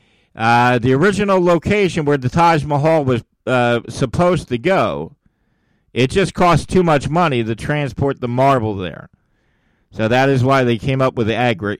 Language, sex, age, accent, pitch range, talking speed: English, male, 50-69, American, 135-195 Hz, 170 wpm